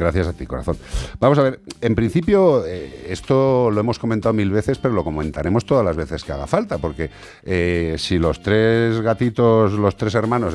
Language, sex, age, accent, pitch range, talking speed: Spanish, male, 50-69, Spanish, 90-130 Hz, 195 wpm